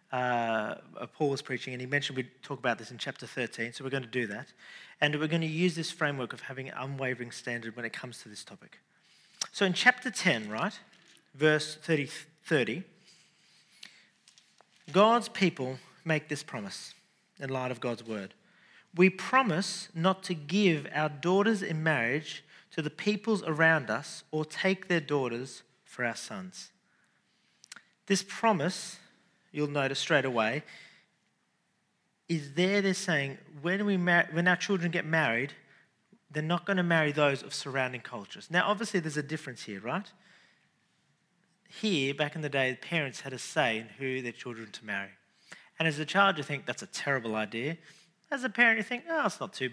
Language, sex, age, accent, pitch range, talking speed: English, male, 40-59, Australian, 135-190 Hz, 175 wpm